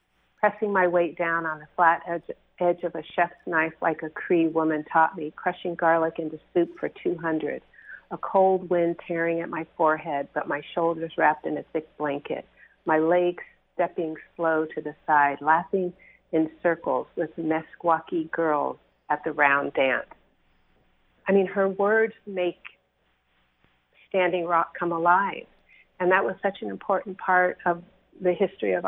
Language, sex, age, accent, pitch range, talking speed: English, female, 50-69, American, 160-180 Hz, 160 wpm